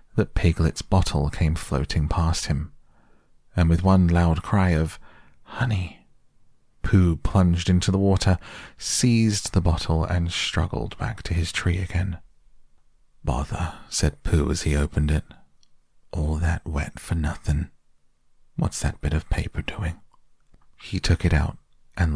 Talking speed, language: 140 wpm, English